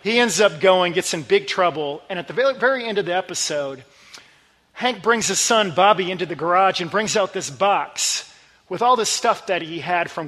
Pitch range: 160-210 Hz